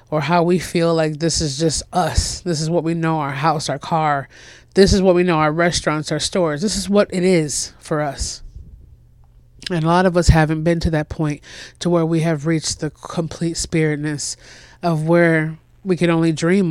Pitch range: 150-185 Hz